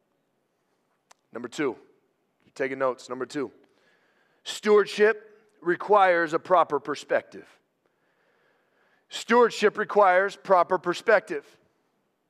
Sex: male